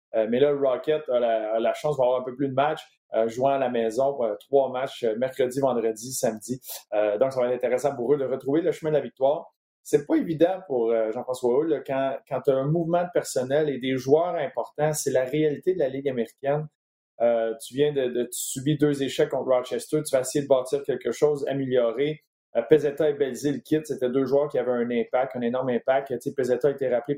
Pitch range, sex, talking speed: 125-150 Hz, male, 240 wpm